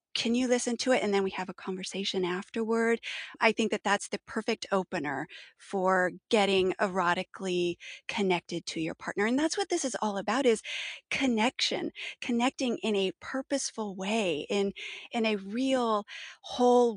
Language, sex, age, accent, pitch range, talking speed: English, female, 30-49, American, 185-235 Hz, 160 wpm